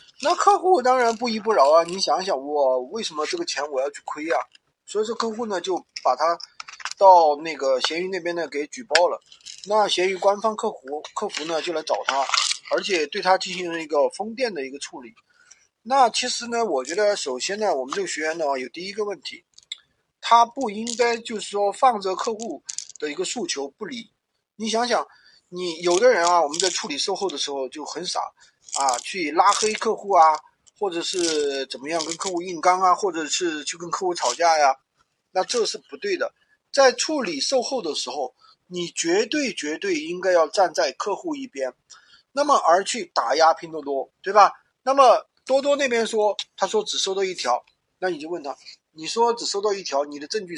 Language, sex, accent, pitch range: Chinese, male, native, 165-245 Hz